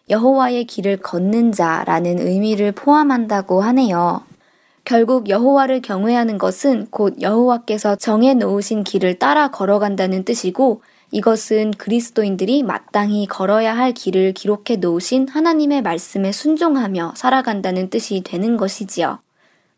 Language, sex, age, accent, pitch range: Korean, male, 20-39, native, 195-255 Hz